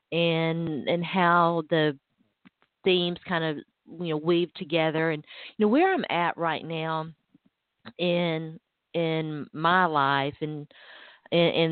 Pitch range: 155-190 Hz